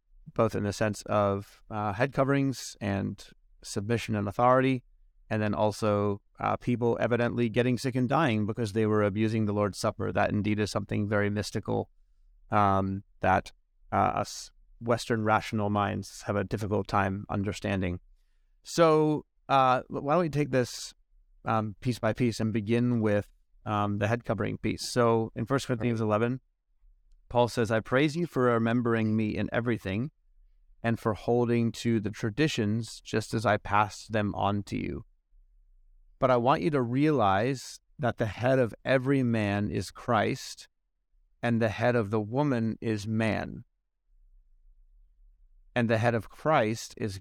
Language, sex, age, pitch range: English, male, 30-49, 100-120 Hz